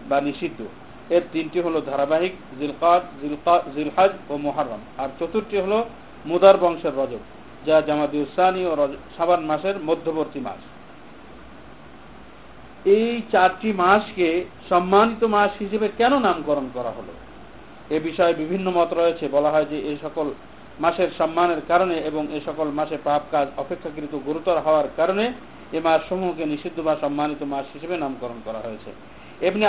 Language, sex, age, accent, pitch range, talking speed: Bengali, male, 50-69, native, 155-195 Hz, 45 wpm